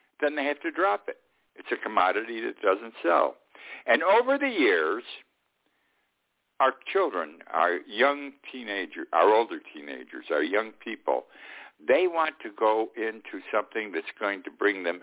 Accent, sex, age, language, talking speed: American, male, 60-79, English, 150 wpm